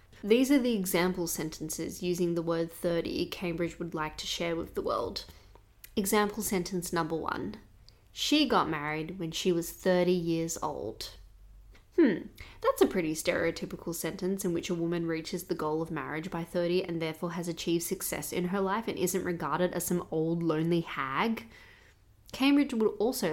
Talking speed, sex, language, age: 170 wpm, female, English, 20-39